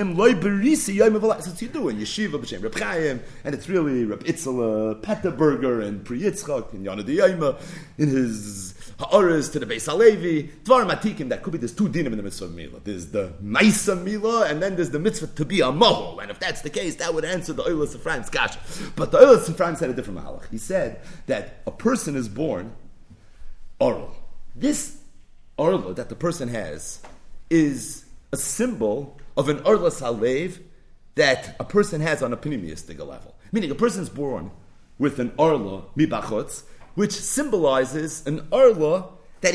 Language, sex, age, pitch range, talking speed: English, male, 30-49, 130-205 Hz, 160 wpm